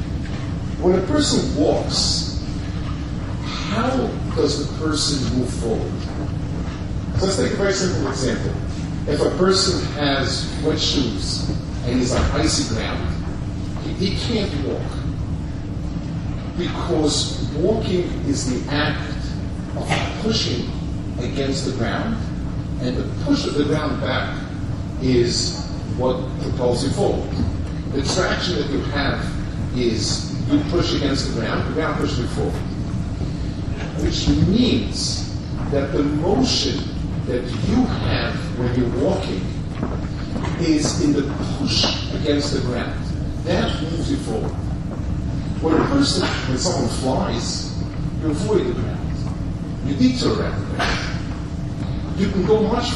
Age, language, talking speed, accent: 40-59, English, 125 wpm, American